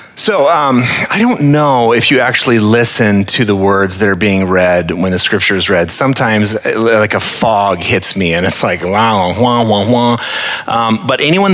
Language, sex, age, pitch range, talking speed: English, male, 30-49, 95-120 Hz, 190 wpm